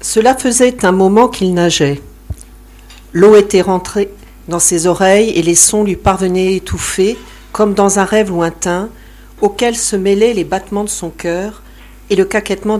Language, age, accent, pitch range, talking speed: French, 50-69, French, 160-220 Hz, 160 wpm